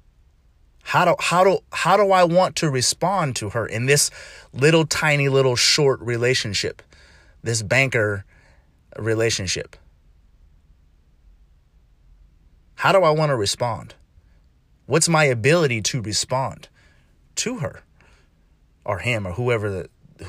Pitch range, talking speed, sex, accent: 80-130 Hz, 115 wpm, male, American